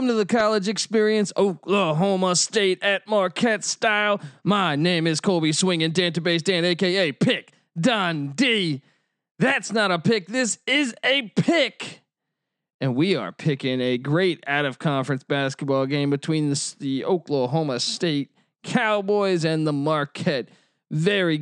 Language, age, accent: English, 20-39, American